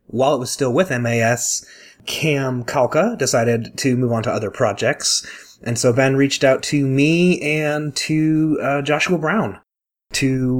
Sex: male